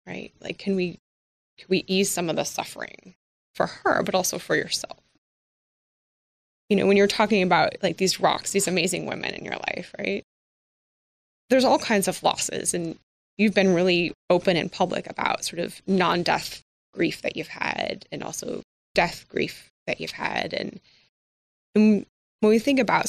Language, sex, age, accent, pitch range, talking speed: English, female, 20-39, American, 170-210 Hz, 170 wpm